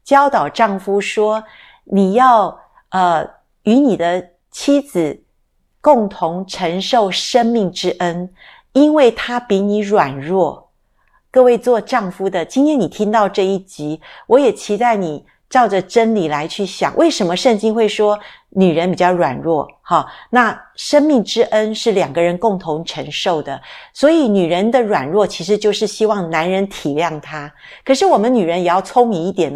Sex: female